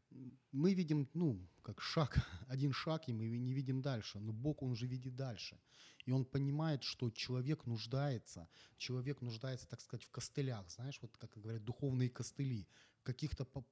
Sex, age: male, 30-49